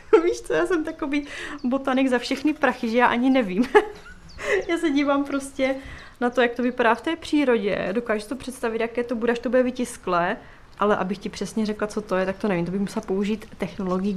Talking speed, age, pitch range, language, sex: 220 wpm, 20-39, 205-255 Hz, Czech, female